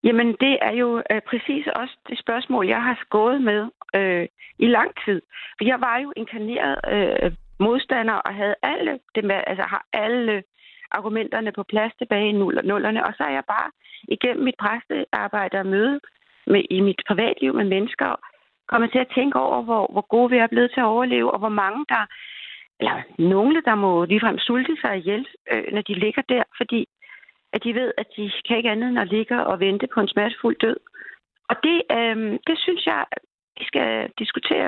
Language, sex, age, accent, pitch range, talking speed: Danish, female, 40-59, native, 200-245 Hz, 195 wpm